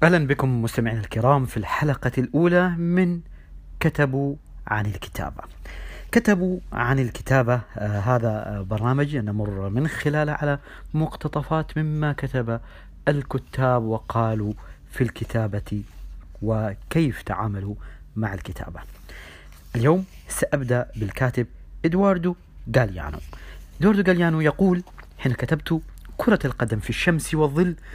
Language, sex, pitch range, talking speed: English, male, 105-150 Hz, 100 wpm